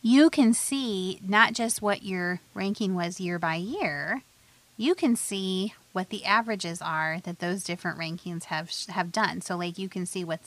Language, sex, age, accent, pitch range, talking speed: English, female, 30-49, American, 175-230 Hz, 185 wpm